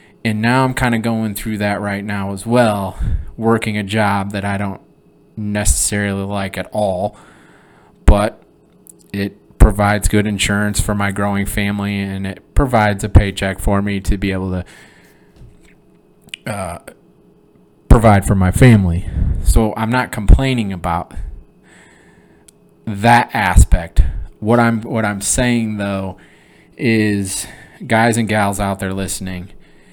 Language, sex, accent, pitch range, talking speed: English, male, American, 95-120 Hz, 130 wpm